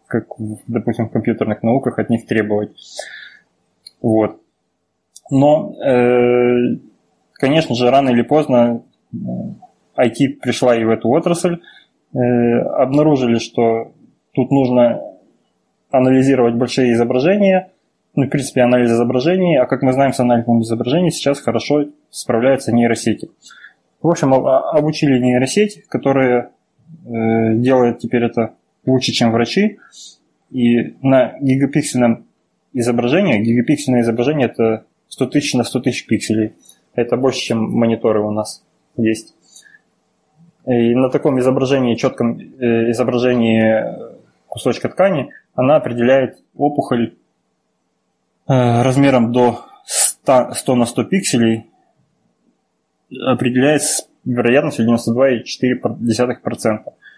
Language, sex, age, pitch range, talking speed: Russian, male, 20-39, 115-135 Hz, 100 wpm